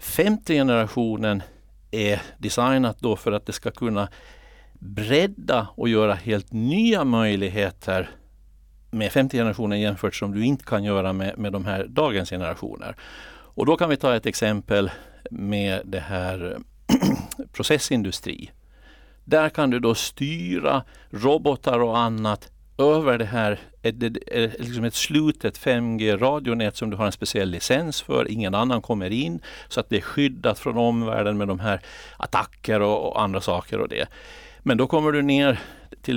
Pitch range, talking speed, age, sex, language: 100-125 Hz, 155 wpm, 60-79, male, Swedish